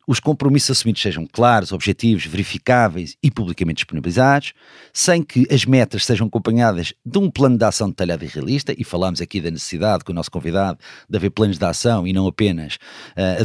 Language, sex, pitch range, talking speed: Portuguese, male, 95-125 Hz, 185 wpm